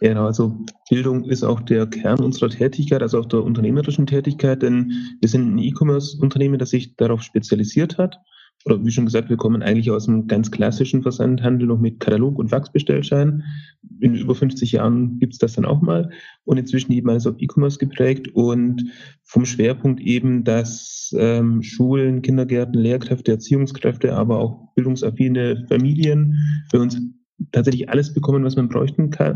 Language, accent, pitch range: German, German, 120-140 Hz